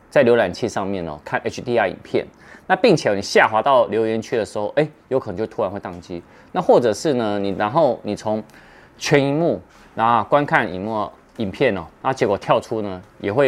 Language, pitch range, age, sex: Chinese, 95-120 Hz, 30-49, male